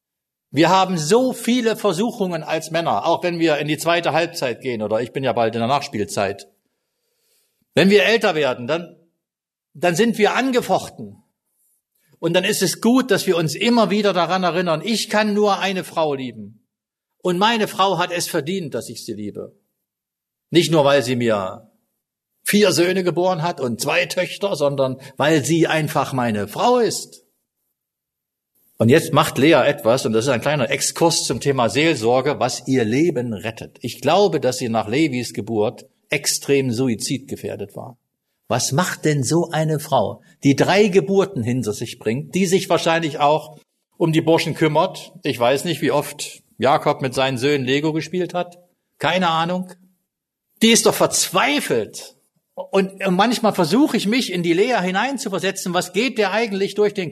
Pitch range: 140-195 Hz